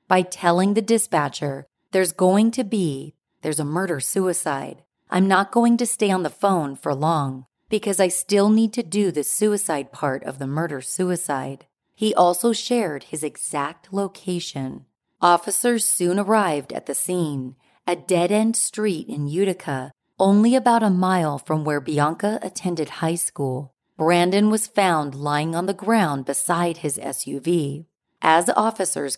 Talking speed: 150 wpm